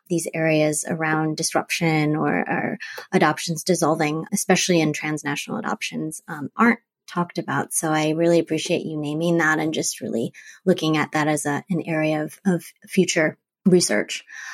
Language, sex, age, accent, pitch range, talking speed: English, female, 20-39, American, 165-205 Hz, 150 wpm